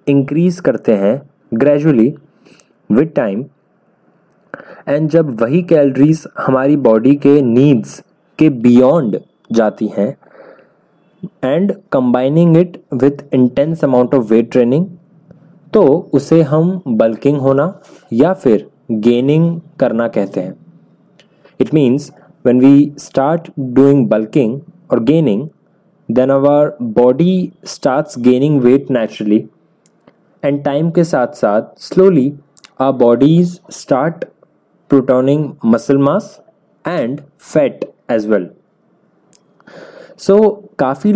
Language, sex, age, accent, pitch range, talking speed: Hindi, male, 20-39, native, 130-170 Hz, 105 wpm